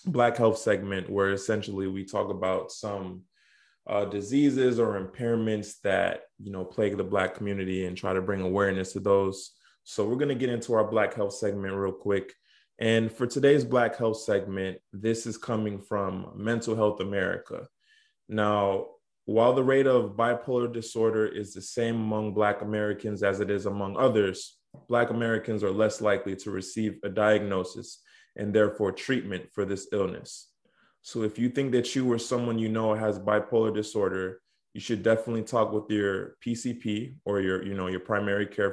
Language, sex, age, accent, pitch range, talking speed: English, male, 20-39, American, 100-115 Hz, 175 wpm